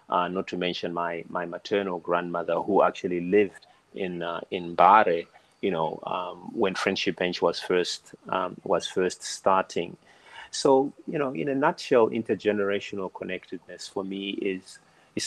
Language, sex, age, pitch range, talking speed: English, male, 30-49, 90-105 Hz, 155 wpm